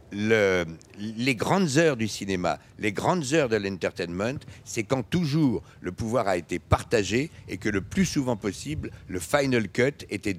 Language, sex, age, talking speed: French, male, 60-79, 170 wpm